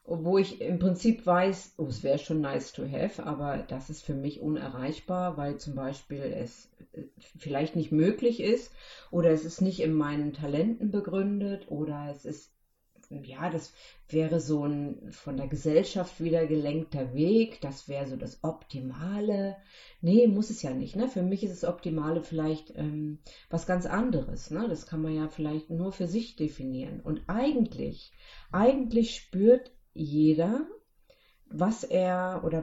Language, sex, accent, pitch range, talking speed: German, female, German, 155-210 Hz, 160 wpm